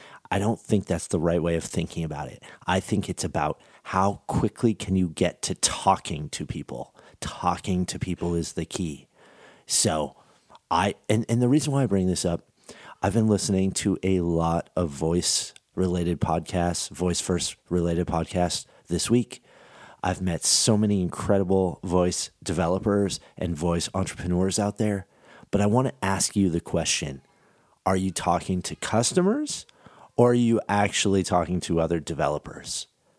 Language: English